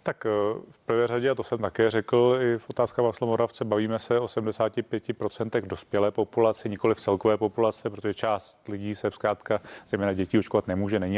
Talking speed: 175 wpm